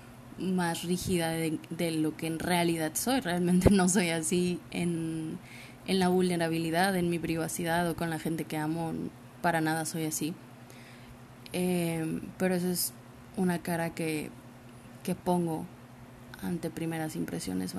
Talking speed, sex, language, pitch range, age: 145 wpm, female, Spanish, 120-180 Hz, 20-39